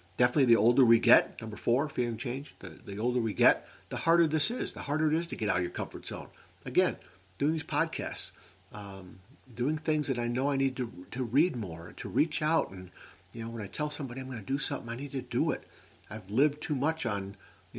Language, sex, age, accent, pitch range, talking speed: English, male, 50-69, American, 100-135 Hz, 245 wpm